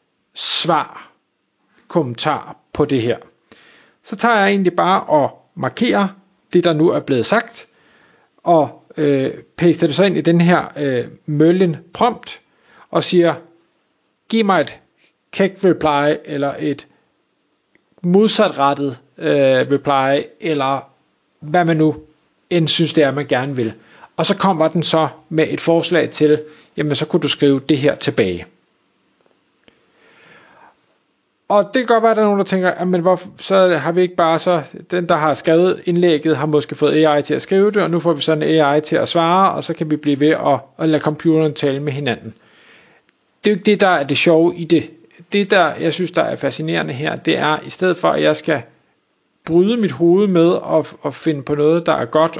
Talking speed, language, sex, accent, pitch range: 190 wpm, Danish, male, native, 150-180 Hz